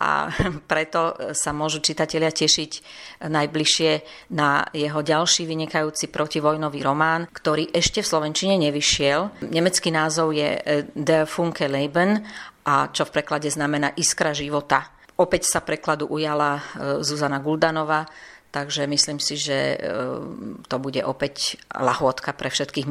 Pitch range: 145-160 Hz